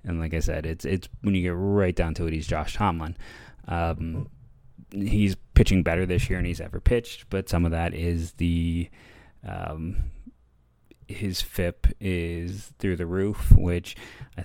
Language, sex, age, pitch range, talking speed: English, male, 20-39, 85-95 Hz, 170 wpm